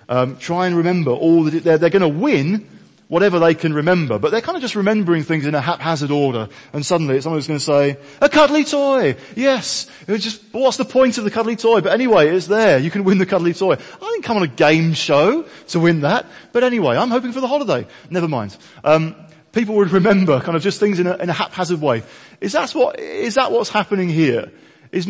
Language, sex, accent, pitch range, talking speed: English, male, British, 160-225 Hz, 225 wpm